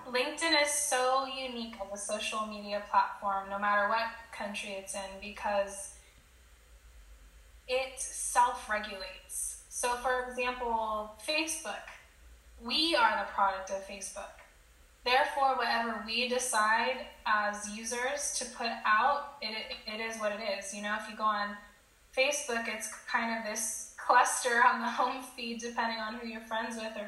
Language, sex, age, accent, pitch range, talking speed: English, female, 10-29, American, 205-245 Hz, 145 wpm